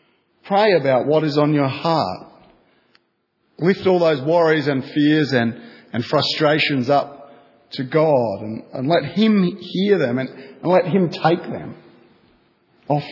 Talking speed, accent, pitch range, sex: 145 wpm, Australian, 135-180 Hz, male